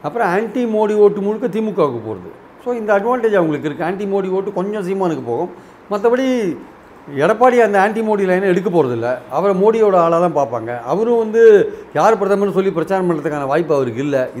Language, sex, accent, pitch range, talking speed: Tamil, male, native, 170-220 Hz, 165 wpm